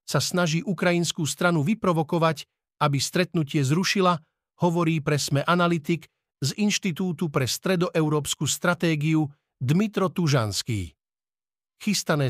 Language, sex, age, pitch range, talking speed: Slovak, male, 50-69, 140-170 Hz, 100 wpm